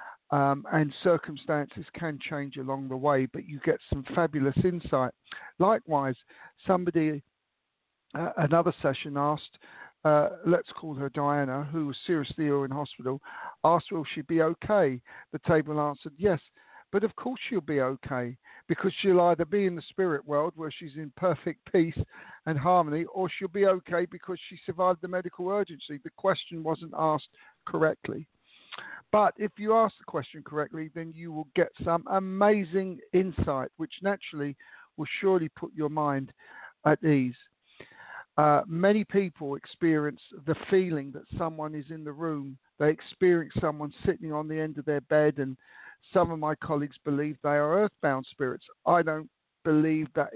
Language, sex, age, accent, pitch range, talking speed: English, male, 50-69, British, 145-180 Hz, 160 wpm